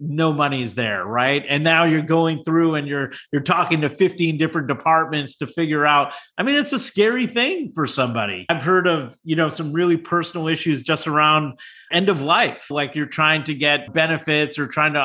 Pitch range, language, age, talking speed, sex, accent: 150-185 Hz, English, 30-49, 205 wpm, male, American